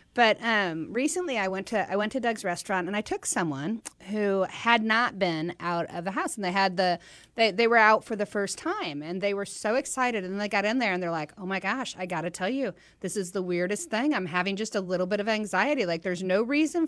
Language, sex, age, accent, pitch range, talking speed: English, female, 30-49, American, 190-260 Hz, 260 wpm